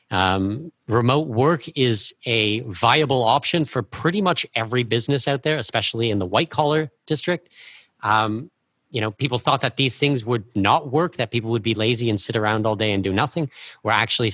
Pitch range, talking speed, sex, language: 115-150 Hz, 195 wpm, male, English